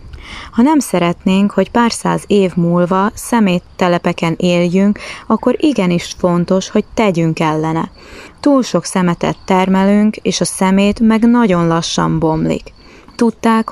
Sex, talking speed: female, 125 wpm